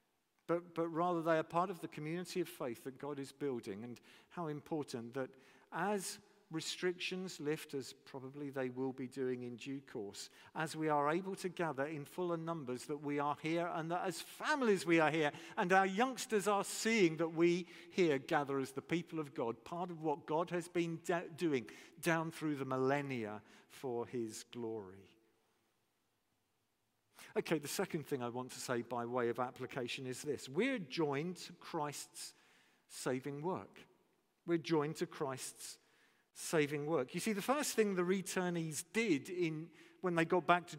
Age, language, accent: 50-69, English, British